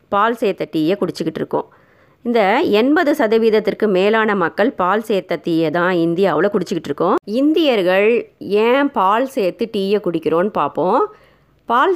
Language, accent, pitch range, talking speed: Tamil, native, 170-225 Hz, 120 wpm